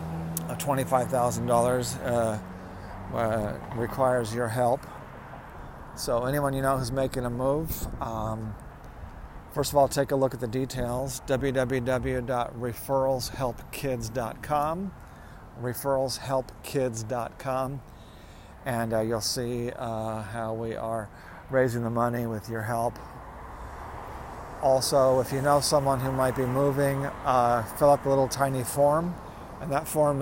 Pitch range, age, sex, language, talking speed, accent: 110-135 Hz, 40-59, male, English, 115 wpm, American